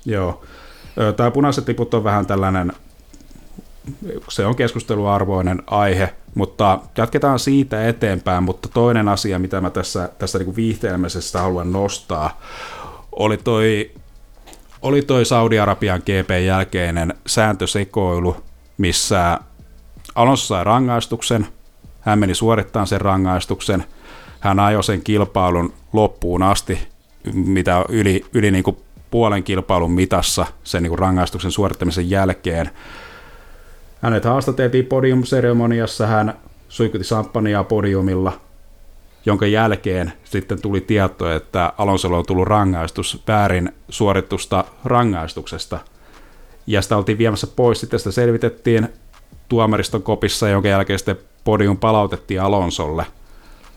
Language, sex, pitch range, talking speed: Finnish, male, 90-115 Hz, 110 wpm